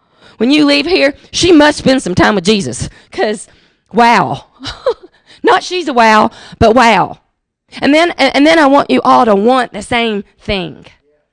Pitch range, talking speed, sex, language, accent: 205-275 Hz, 170 wpm, female, English, American